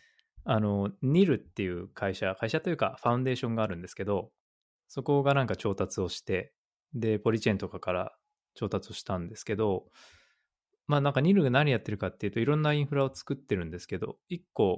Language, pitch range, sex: Japanese, 95-135 Hz, male